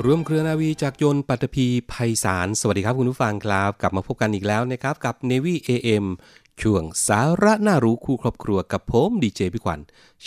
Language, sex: Thai, male